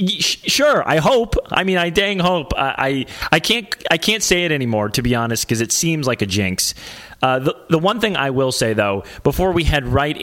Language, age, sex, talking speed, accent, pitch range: English, 30-49, male, 230 wpm, American, 130-180 Hz